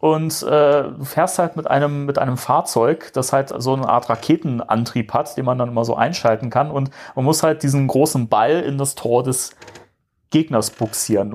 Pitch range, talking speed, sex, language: 120-150 Hz, 195 wpm, male, German